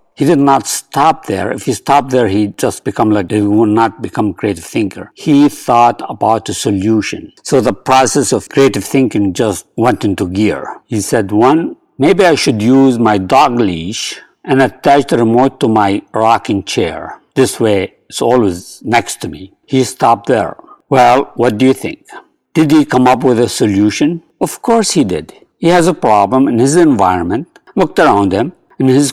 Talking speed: 185 wpm